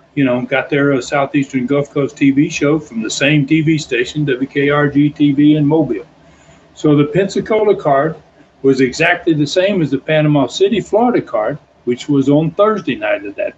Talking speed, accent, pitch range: 175 wpm, American, 140-170 Hz